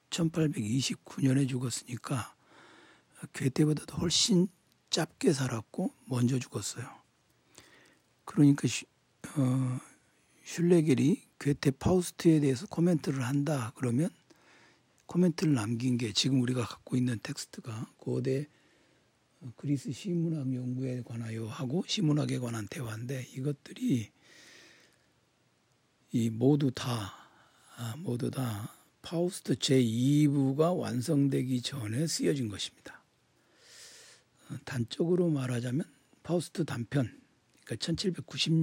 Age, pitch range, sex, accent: 60-79, 125-160 Hz, male, native